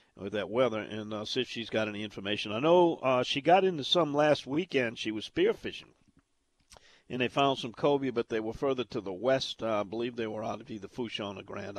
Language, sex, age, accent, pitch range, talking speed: English, male, 50-69, American, 115-155 Hz, 240 wpm